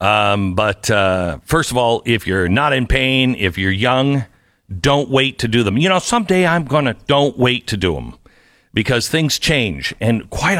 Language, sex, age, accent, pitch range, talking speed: English, male, 50-69, American, 105-150 Hz, 190 wpm